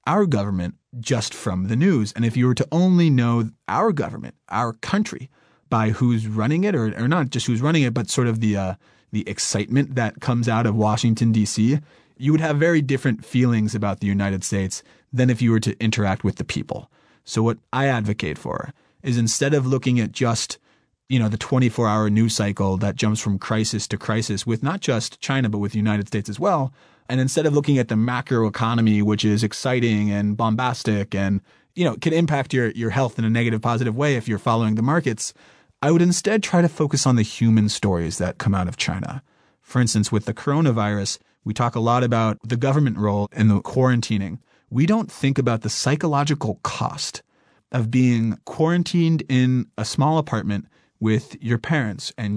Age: 30-49